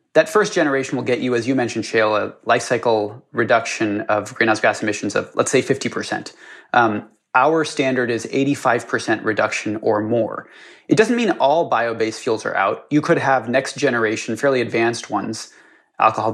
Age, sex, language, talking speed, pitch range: 30-49, male, English, 175 wpm, 115-150 Hz